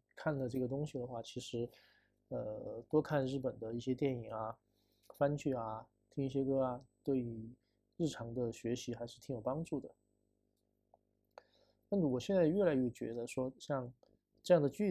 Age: 20-39